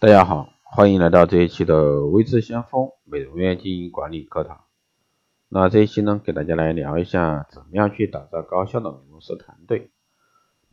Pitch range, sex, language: 85-115 Hz, male, Chinese